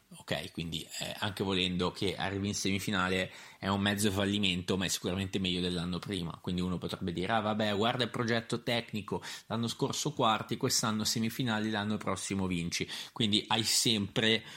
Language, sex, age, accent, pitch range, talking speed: Italian, male, 30-49, native, 95-115 Hz, 160 wpm